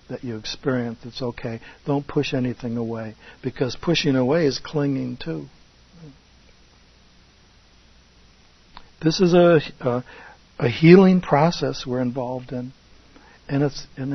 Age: 60-79